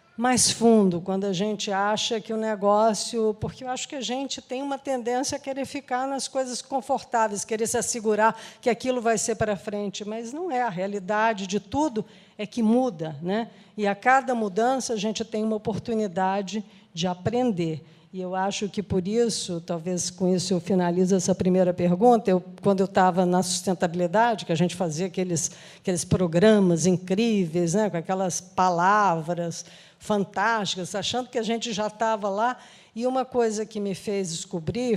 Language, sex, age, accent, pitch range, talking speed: Portuguese, female, 50-69, Brazilian, 185-235 Hz, 175 wpm